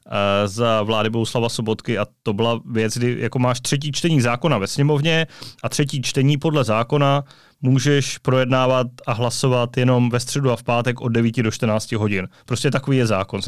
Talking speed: 185 wpm